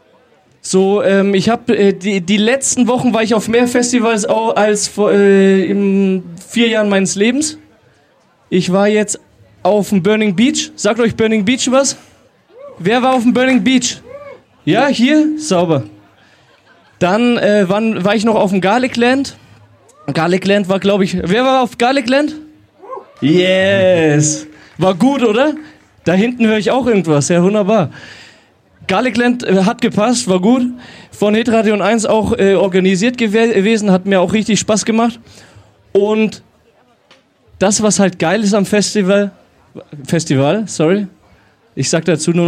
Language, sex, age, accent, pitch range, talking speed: German, male, 20-39, German, 180-230 Hz, 155 wpm